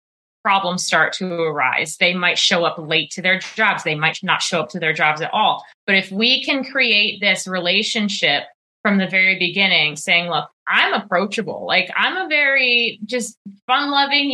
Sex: female